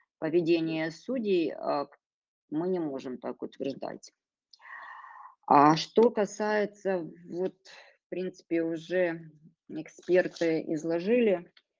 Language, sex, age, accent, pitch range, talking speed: Ukrainian, female, 20-39, native, 150-180 Hz, 80 wpm